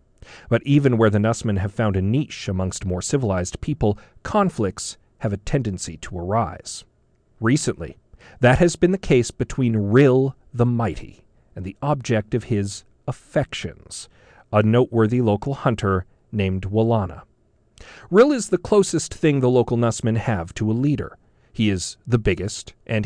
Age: 40-59